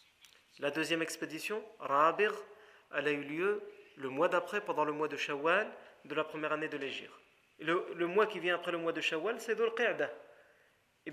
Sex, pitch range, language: male, 150-200 Hz, French